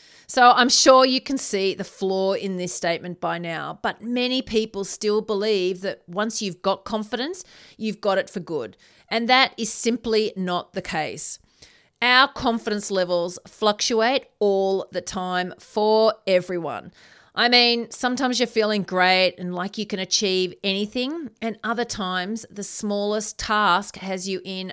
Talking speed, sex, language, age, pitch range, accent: 160 wpm, female, English, 40-59, 185-225 Hz, Australian